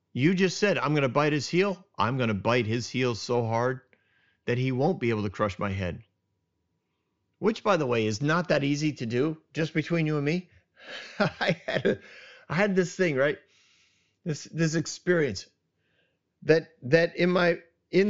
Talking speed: 180 wpm